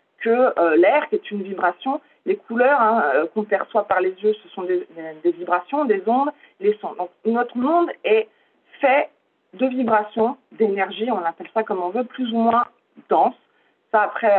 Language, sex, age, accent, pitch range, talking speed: French, female, 40-59, French, 210-290 Hz, 190 wpm